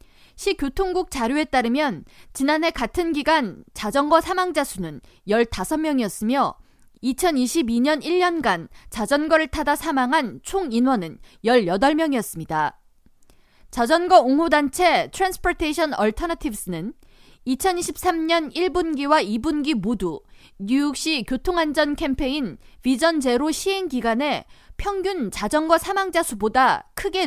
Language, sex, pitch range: Korean, female, 240-330 Hz